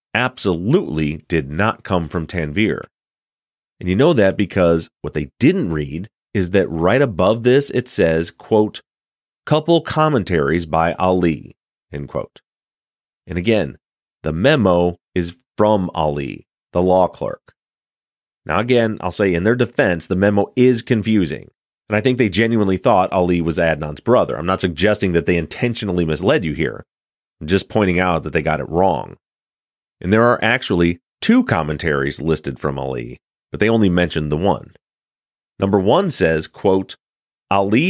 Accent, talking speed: American, 155 wpm